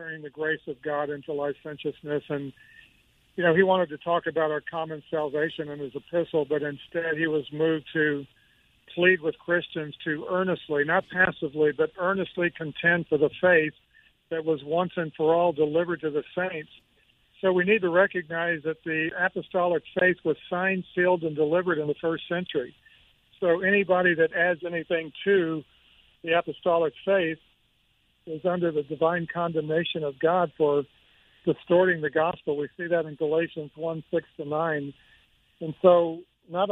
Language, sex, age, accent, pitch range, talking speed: English, male, 50-69, American, 150-175 Hz, 160 wpm